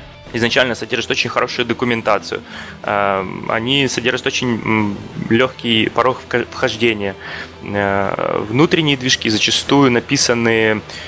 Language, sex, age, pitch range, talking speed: Russian, male, 20-39, 105-125 Hz, 80 wpm